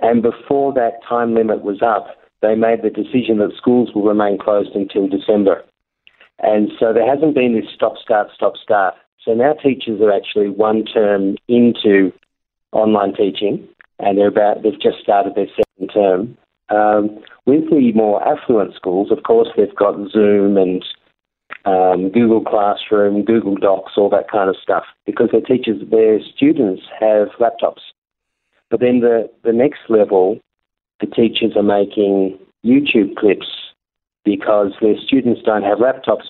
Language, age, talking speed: English, 50-69, 150 wpm